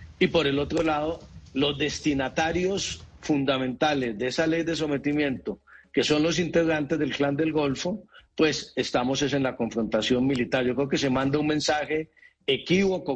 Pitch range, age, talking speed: 130-160 Hz, 50-69, 160 wpm